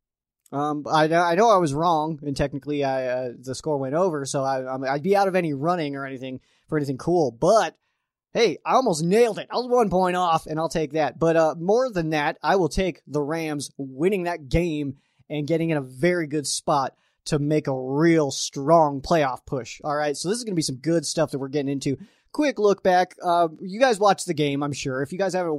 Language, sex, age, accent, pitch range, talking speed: English, male, 20-39, American, 140-170 Hz, 230 wpm